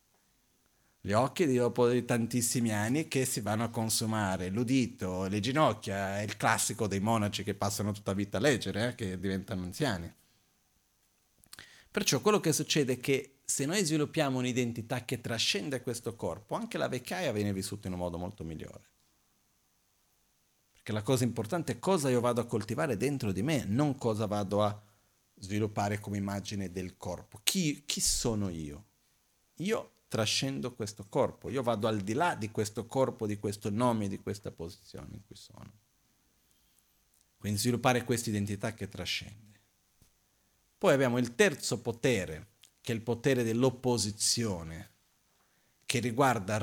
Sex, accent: male, native